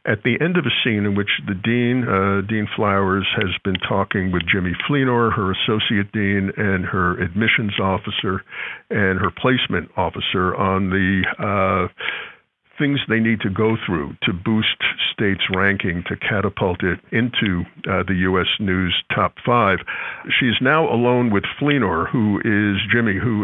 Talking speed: 160 wpm